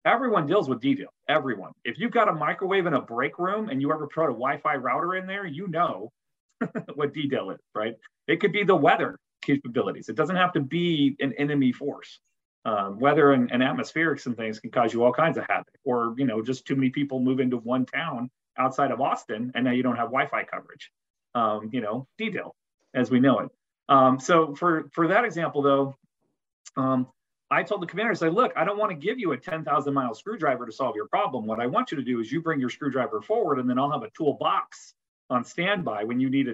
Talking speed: 230 wpm